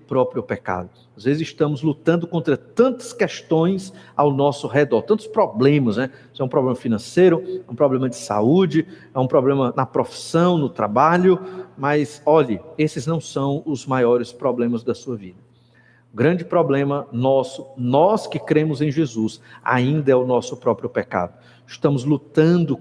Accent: Brazilian